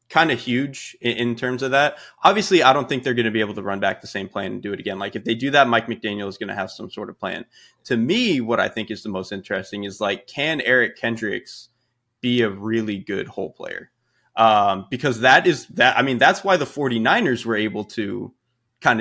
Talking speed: 245 wpm